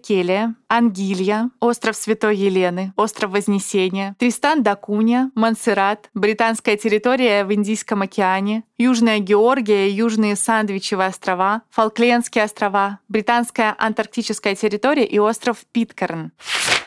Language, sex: Russian, female